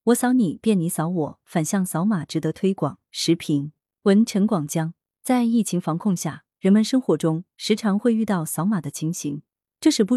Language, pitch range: Chinese, 160-225 Hz